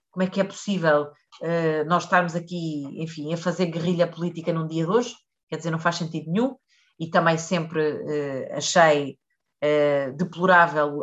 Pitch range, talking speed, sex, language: 165-215 Hz, 150 wpm, female, Portuguese